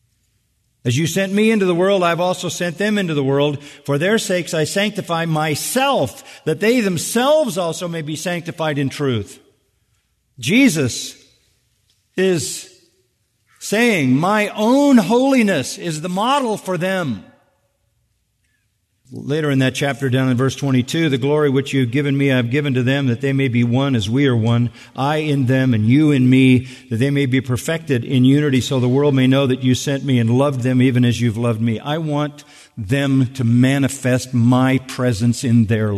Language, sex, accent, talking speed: English, male, American, 185 wpm